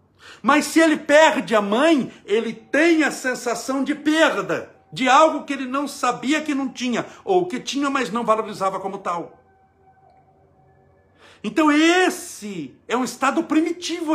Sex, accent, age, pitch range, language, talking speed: male, Brazilian, 60-79, 180-295 Hz, Portuguese, 150 wpm